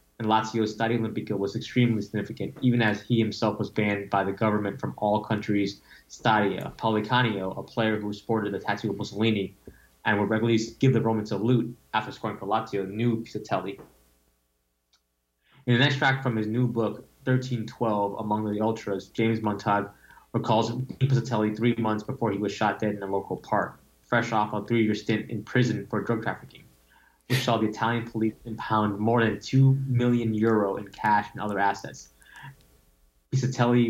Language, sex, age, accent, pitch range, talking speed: English, male, 20-39, American, 100-115 Hz, 170 wpm